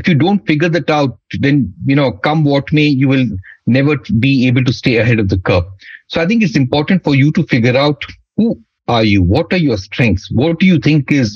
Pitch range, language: 120-160 Hz, English